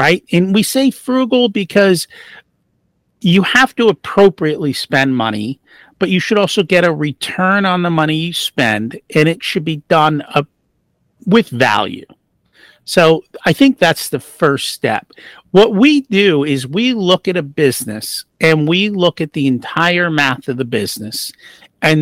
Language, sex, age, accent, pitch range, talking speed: English, male, 50-69, American, 140-190 Hz, 160 wpm